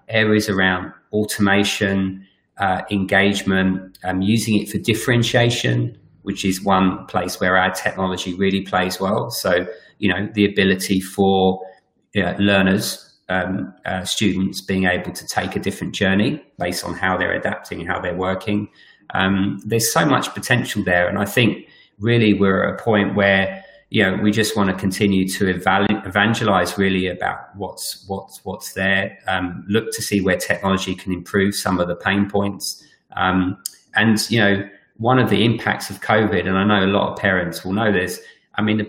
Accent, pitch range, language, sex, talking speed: British, 95-105 Hz, English, male, 180 wpm